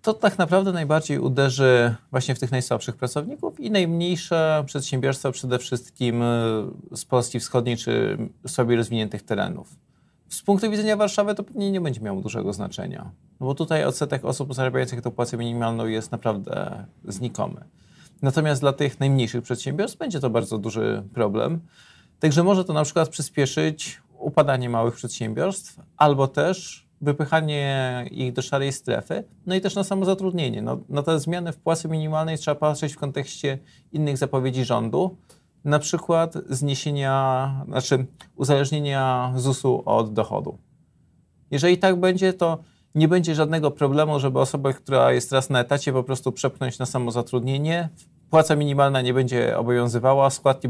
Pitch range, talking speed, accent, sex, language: 125-160 Hz, 145 wpm, native, male, Polish